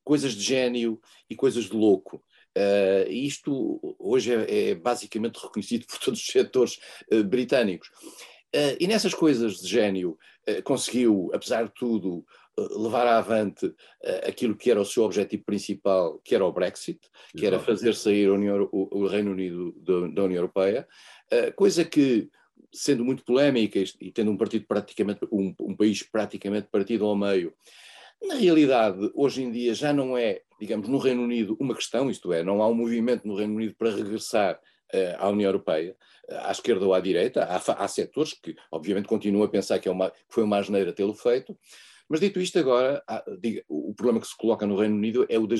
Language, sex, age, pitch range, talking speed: Portuguese, male, 50-69, 100-145 Hz, 190 wpm